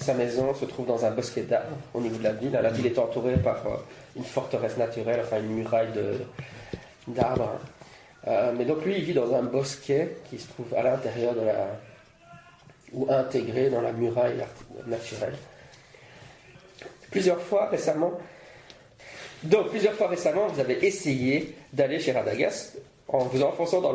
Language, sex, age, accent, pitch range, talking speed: English, male, 30-49, French, 115-140 Hz, 160 wpm